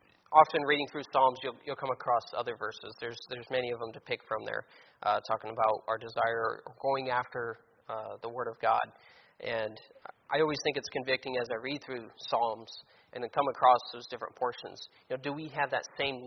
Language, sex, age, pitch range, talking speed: English, male, 30-49, 120-145 Hz, 210 wpm